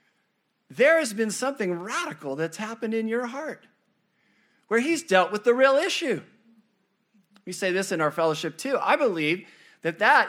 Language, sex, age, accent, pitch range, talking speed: English, male, 50-69, American, 185-250 Hz, 165 wpm